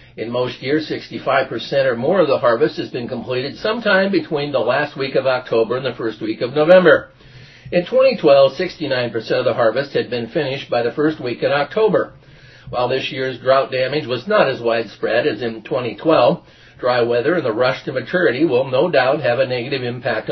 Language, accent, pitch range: English, American, 120-160 Hz